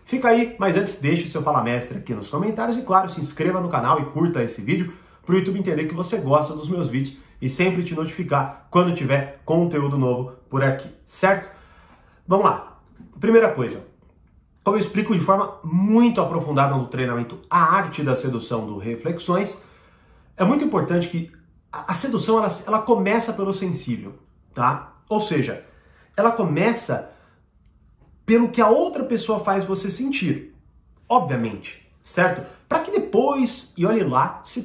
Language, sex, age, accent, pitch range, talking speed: Portuguese, male, 40-59, Brazilian, 140-200 Hz, 165 wpm